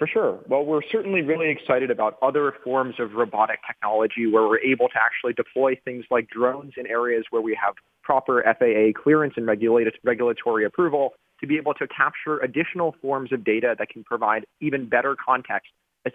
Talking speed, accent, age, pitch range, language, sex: 180 wpm, American, 30-49, 115-140 Hz, English, male